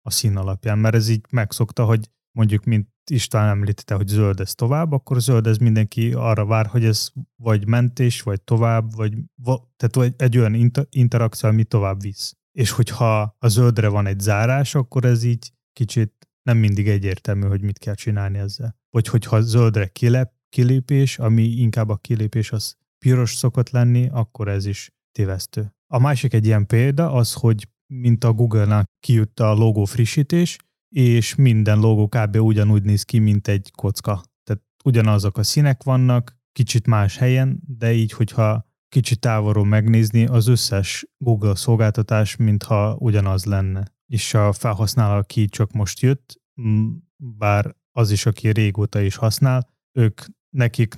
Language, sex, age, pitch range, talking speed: Hungarian, male, 30-49, 105-125 Hz, 155 wpm